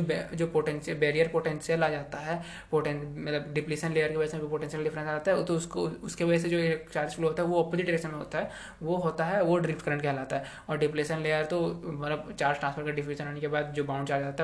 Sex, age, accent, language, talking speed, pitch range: male, 20-39, native, Hindi, 180 wpm, 150-165 Hz